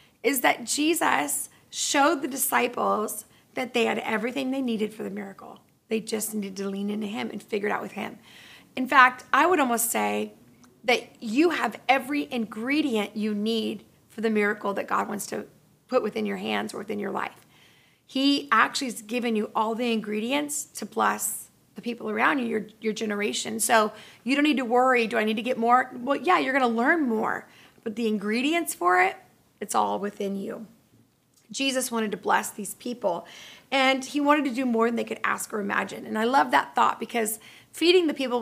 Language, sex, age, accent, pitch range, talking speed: English, female, 30-49, American, 215-270 Hz, 200 wpm